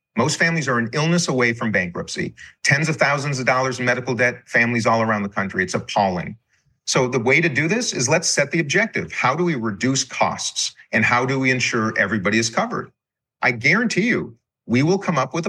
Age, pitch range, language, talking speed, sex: 40-59, 115-165 Hz, English, 215 wpm, male